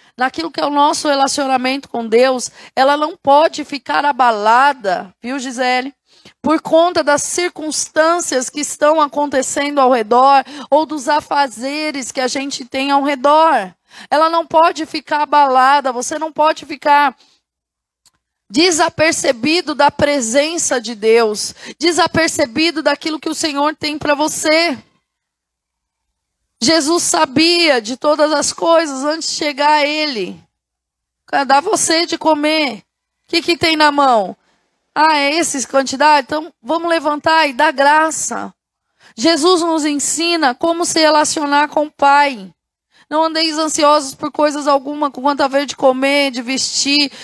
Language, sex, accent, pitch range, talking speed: Portuguese, female, Brazilian, 275-320 Hz, 140 wpm